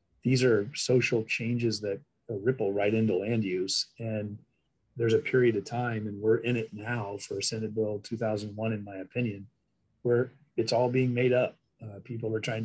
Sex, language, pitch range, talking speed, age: male, English, 105-120 Hz, 180 wpm, 30-49